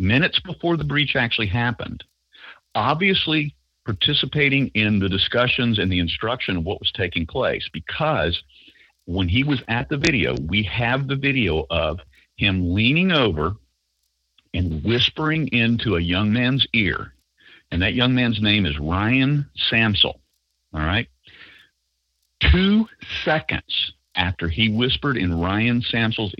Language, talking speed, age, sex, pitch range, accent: English, 135 wpm, 50-69, male, 85-125 Hz, American